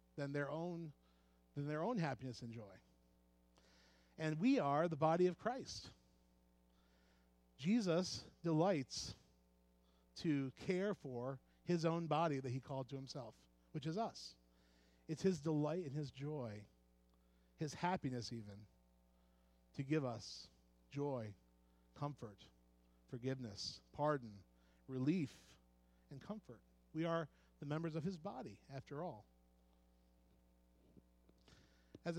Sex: male